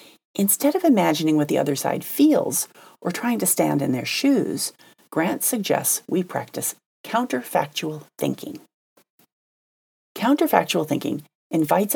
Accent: American